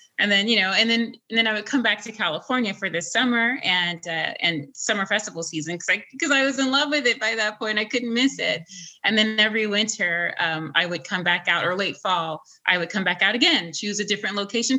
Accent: American